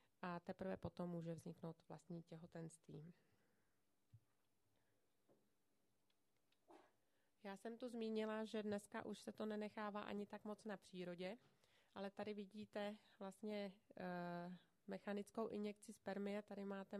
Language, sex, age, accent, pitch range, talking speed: Czech, female, 30-49, native, 170-205 Hz, 110 wpm